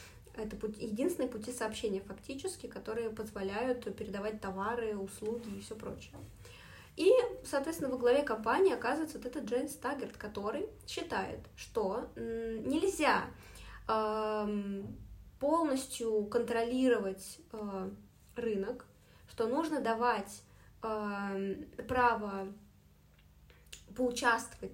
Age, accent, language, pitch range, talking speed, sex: 20-39, native, Russian, 210-260 Hz, 85 wpm, female